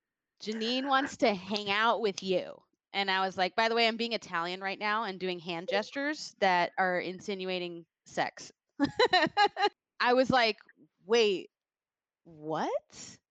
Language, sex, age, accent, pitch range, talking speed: English, female, 20-39, American, 180-245 Hz, 145 wpm